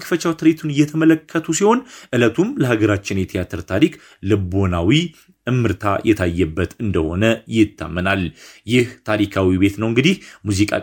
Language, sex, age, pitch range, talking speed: Amharic, male, 30-49, 100-145 Hz, 105 wpm